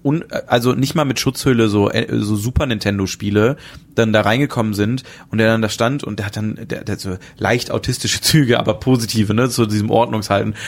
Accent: German